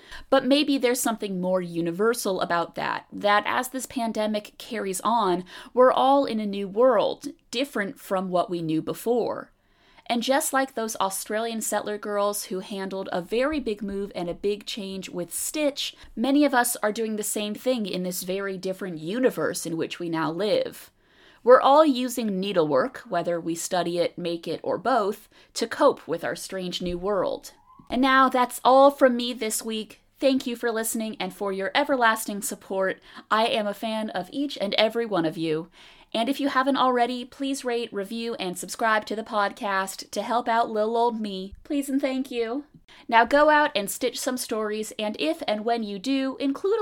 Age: 30-49